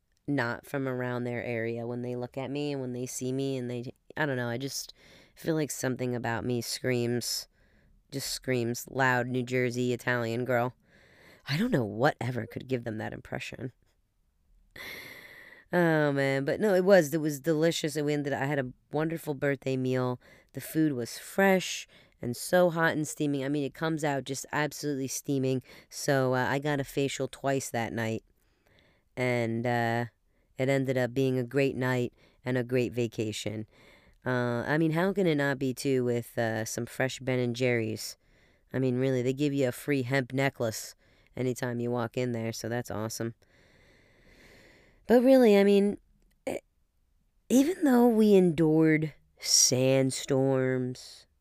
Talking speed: 170 wpm